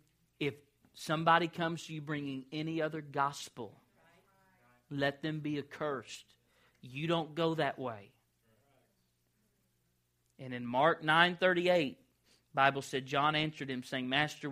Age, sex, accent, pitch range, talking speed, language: 40-59, male, American, 115-160 Hz, 130 wpm, English